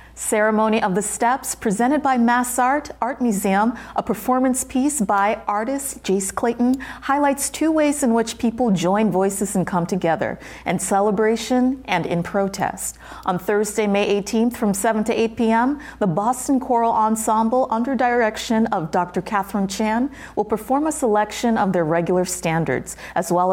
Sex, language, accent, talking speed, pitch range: female, English, American, 160 wpm, 185-240 Hz